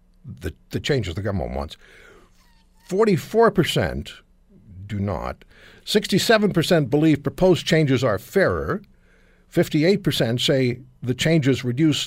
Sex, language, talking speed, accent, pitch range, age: male, English, 100 wpm, American, 115-165 Hz, 60-79